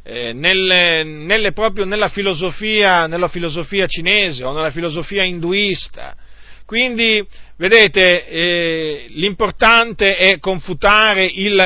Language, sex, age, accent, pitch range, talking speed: Italian, male, 40-59, native, 150-190 Hz, 105 wpm